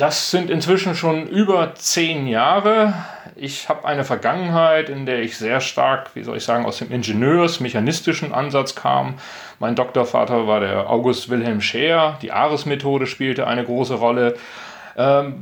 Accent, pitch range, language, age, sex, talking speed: German, 120-150 Hz, German, 40-59, male, 155 wpm